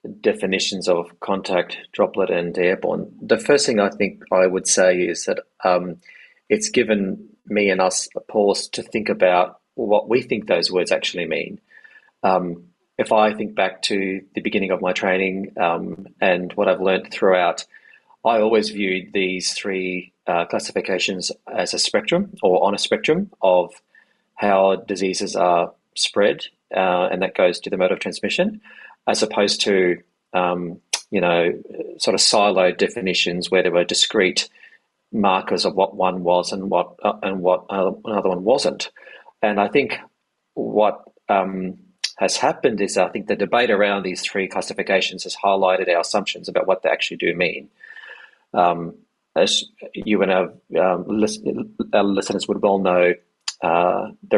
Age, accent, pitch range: 30-49, Australian, 90-100 Hz